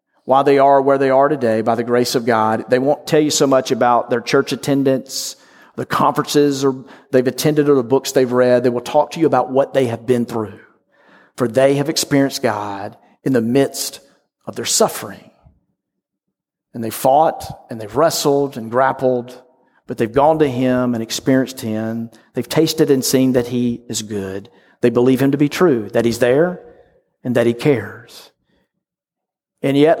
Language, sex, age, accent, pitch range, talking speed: English, male, 40-59, American, 120-145 Hz, 185 wpm